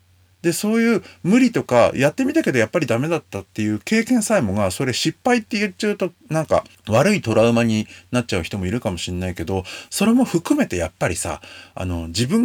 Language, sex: Japanese, male